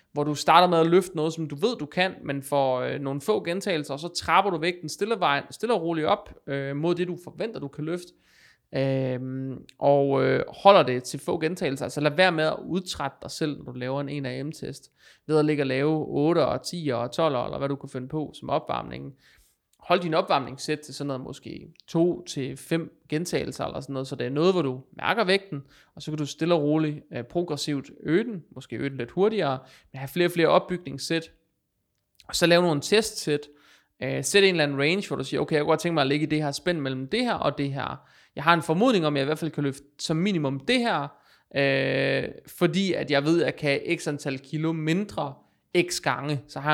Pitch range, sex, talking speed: 135-170 Hz, male, 235 wpm